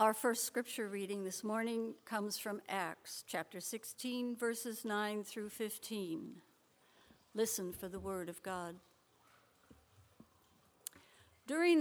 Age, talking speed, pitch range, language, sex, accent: 60-79, 110 wpm, 195-240 Hz, English, female, American